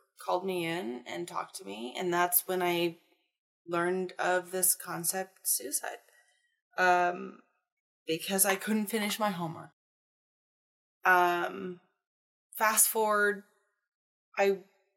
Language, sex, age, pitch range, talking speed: English, female, 20-39, 170-200 Hz, 110 wpm